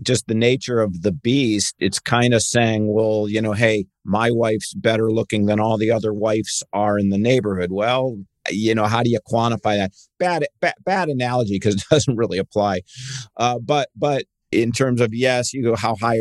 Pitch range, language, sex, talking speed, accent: 105-125 Hz, English, male, 205 wpm, American